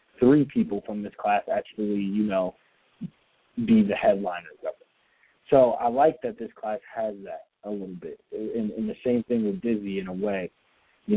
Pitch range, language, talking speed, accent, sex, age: 95-115 Hz, English, 190 wpm, American, male, 20-39